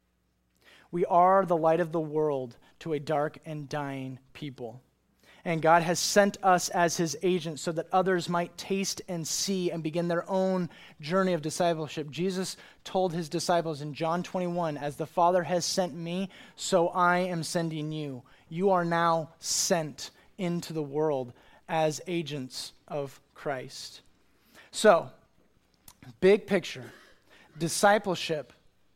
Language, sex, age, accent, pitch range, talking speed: English, male, 30-49, American, 155-185 Hz, 140 wpm